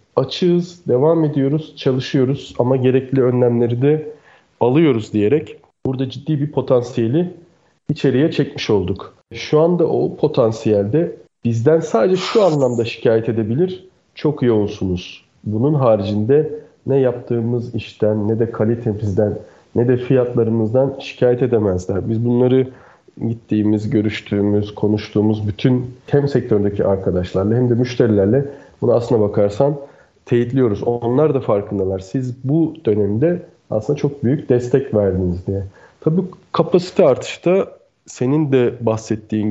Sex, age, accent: male, 40-59, native